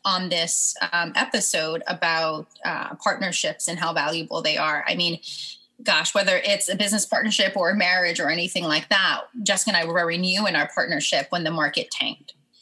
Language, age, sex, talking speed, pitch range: English, 20-39, female, 190 wpm, 165-220 Hz